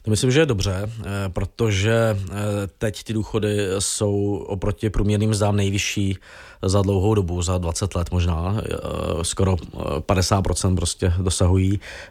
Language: Czech